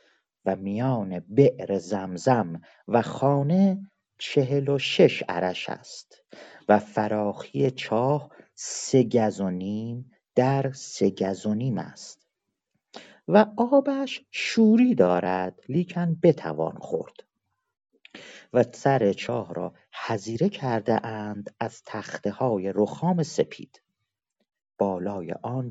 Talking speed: 100 wpm